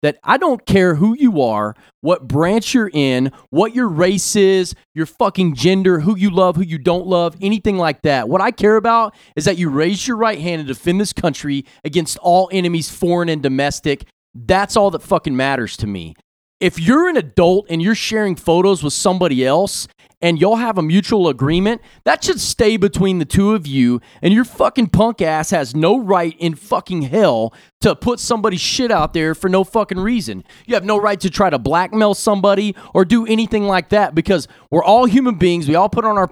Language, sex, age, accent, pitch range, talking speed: English, male, 30-49, American, 165-220 Hz, 210 wpm